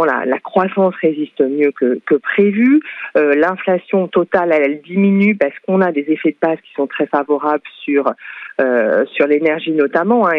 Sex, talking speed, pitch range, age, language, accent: female, 180 wpm, 150-200 Hz, 40-59, French, French